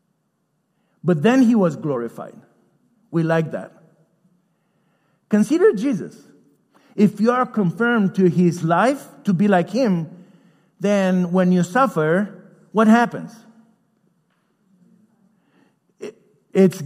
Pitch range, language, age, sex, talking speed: 175-220 Hz, English, 50-69, male, 100 wpm